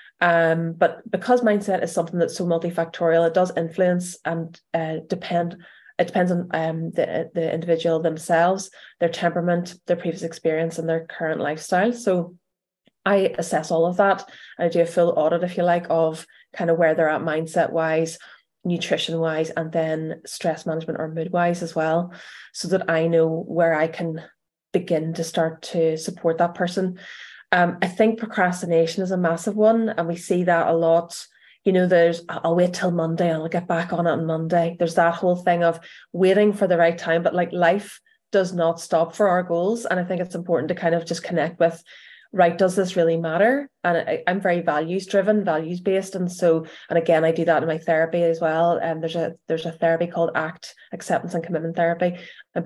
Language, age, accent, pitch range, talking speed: English, 20-39, Irish, 165-180 Hz, 200 wpm